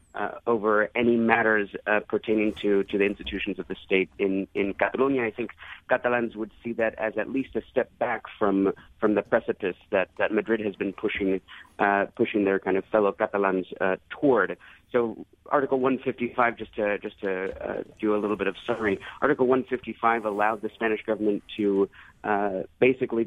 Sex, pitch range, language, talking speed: male, 105-125 Hz, English, 180 wpm